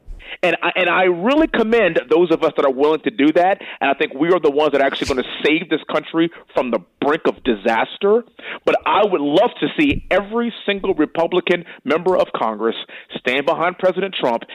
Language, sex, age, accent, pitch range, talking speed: English, male, 40-59, American, 145-230 Hz, 205 wpm